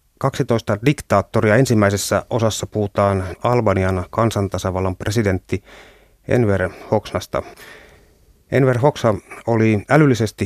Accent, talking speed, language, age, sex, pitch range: native, 80 wpm, Finnish, 30-49, male, 95-110 Hz